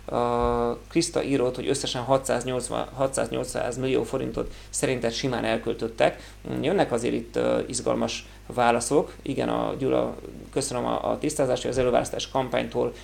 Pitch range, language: 115-140 Hz, Hungarian